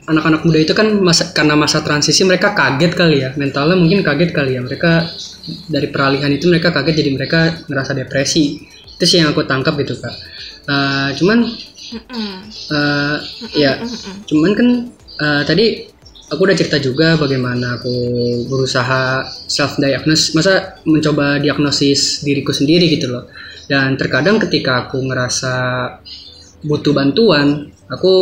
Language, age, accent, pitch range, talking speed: Indonesian, 20-39, native, 140-180 Hz, 140 wpm